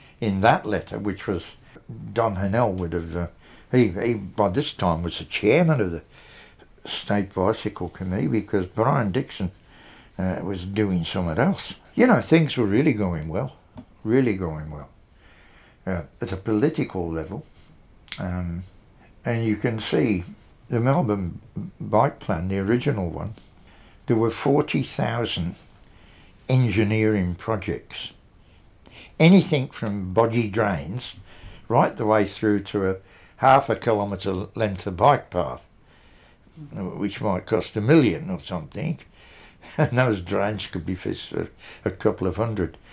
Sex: male